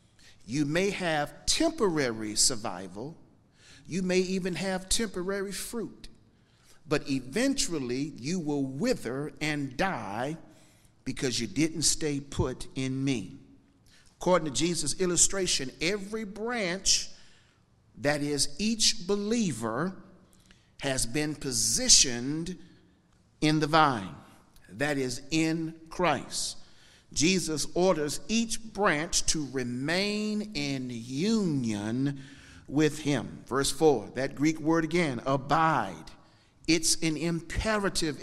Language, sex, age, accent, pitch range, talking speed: English, male, 50-69, American, 135-185 Hz, 100 wpm